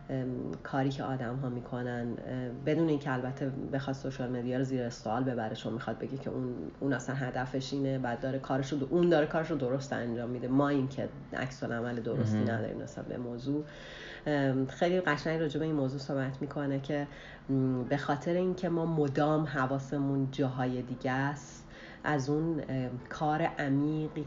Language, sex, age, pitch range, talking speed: English, female, 30-49, 125-150 Hz, 160 wpm